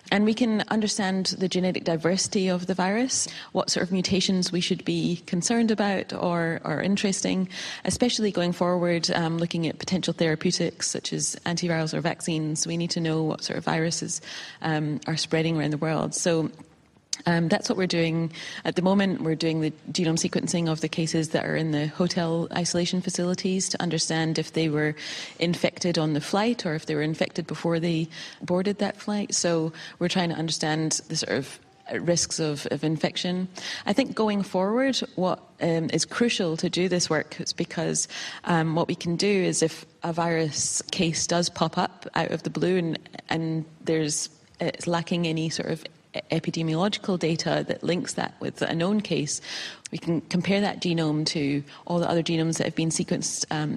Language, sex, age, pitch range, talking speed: English, female, 30-49, 160-180 Hz, 185 wpm